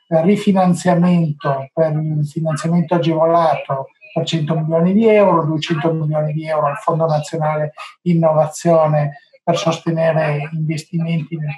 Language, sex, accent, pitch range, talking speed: English, male, Italian, 160-190 Hz, 115 wpm